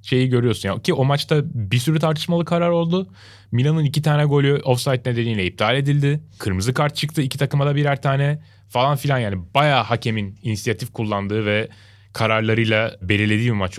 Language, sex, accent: Turkish, male, native